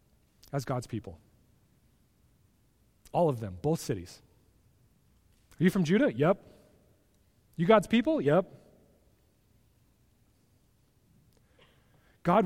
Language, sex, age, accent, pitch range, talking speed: English, male, 30-49, American, 135-195 Hz, 85 wpm